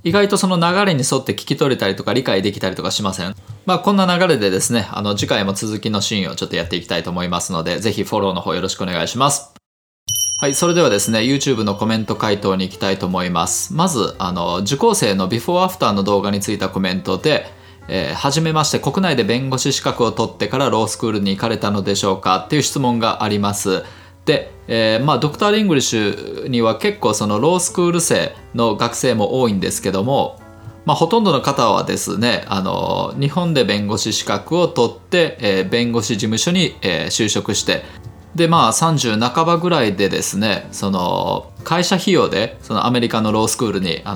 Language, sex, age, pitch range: Japanese, male, 20-39, 100-140 Hz